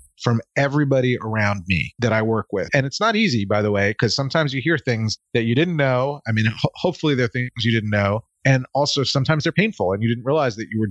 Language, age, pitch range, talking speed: English, 30-49, 105-140 Hz, 240 wpm